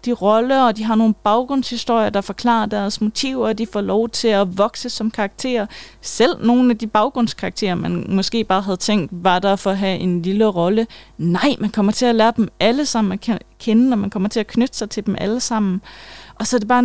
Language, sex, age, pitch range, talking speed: Danish, female, 30-49, 190-235 Hz, 230 wpm